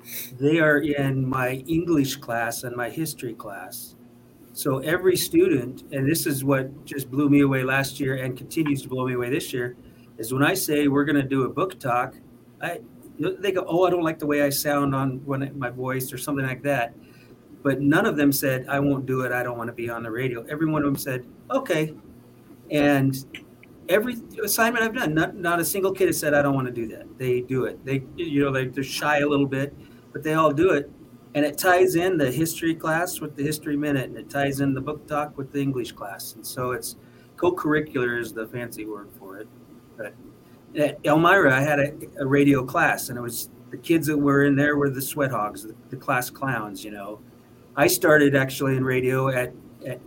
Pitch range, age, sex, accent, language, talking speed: 125-150 Hz, 40-59, male, American, English, 220 wpm